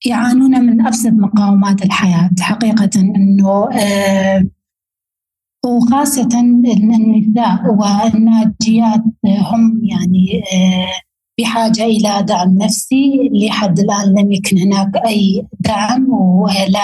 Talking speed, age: 95 wpm, 20-39